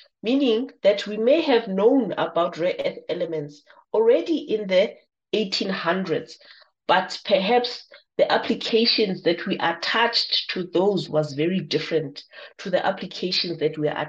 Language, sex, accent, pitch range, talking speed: English, female, South African, 165-230 Hz, 135 wpm